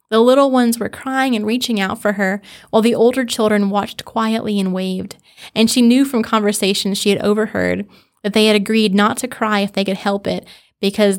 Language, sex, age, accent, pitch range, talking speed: English, female, 20-39, American, 195-230 Hz, 210 wpm